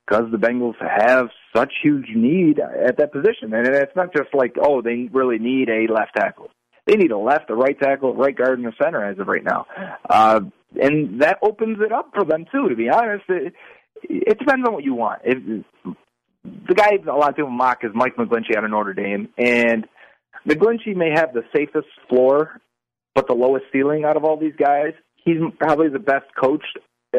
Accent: American